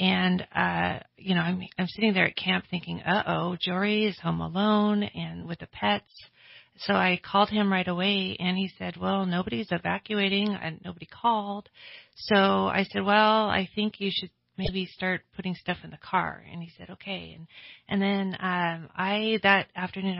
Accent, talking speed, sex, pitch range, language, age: American, 180 wpm, female, 170-200 Hz, English, 40-59